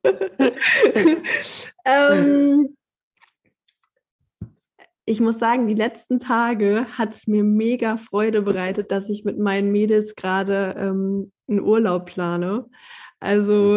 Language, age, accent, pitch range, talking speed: German, 20-39, German, 195-225 Hz, 100 wpm